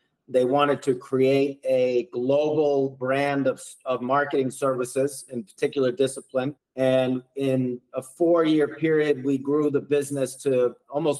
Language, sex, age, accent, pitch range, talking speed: English, male, 40-59, American, 125-140 Hz, 135 wpm